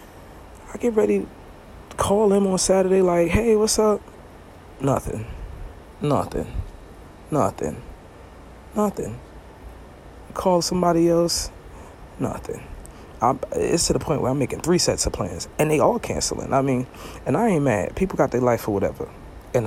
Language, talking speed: English, 150 wpm